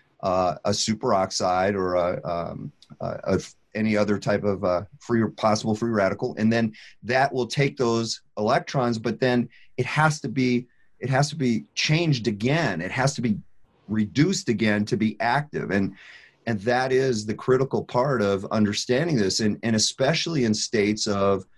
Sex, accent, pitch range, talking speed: male, American, 100-125 Hz, 165 wpm